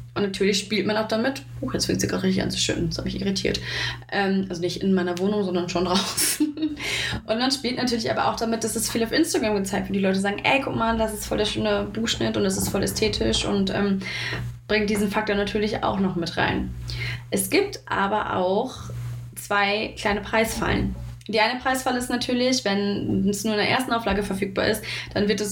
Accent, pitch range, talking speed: German, 170-215 Hz, 220 wpm